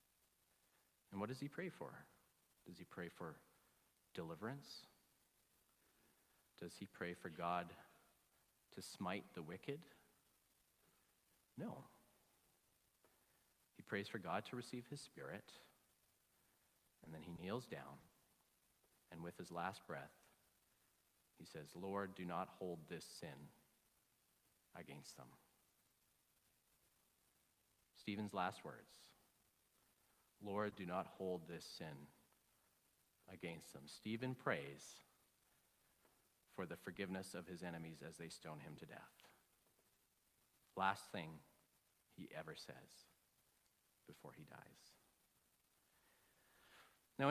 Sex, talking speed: male, 105 wpm